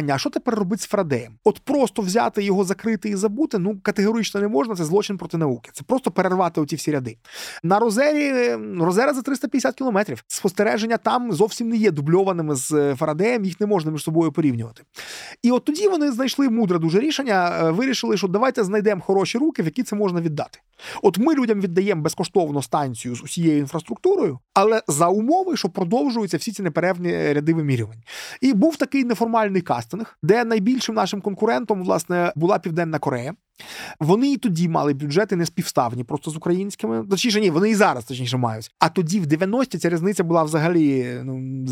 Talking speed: 180 wpm